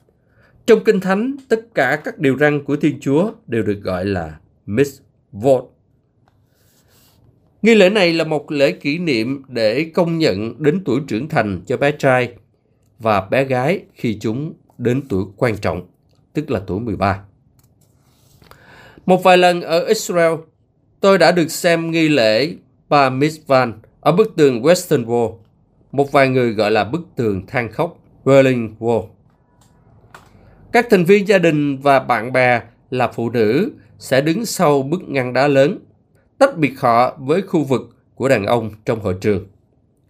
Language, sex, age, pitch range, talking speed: Vietnamese, male, 20-39, 110-155 Hz, 160 wpm